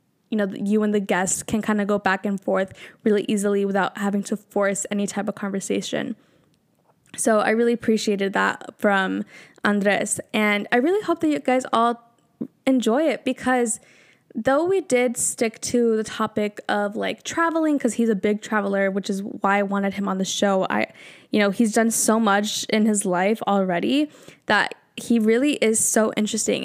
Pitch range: 200-235 Hz